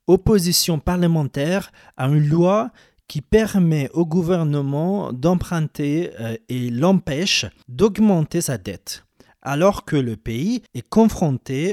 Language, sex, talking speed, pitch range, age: English, male, 105 wpm, 115-170 Hz, 40-59